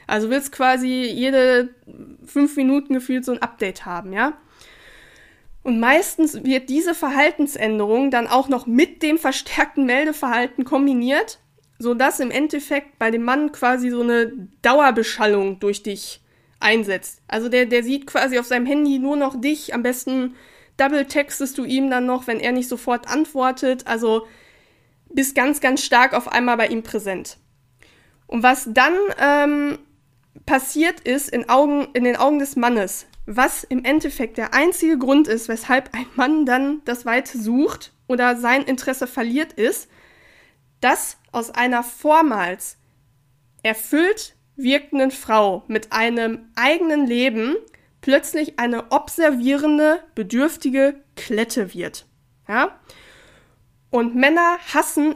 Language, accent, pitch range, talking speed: German, German, 230-285 Hz, 135 wpm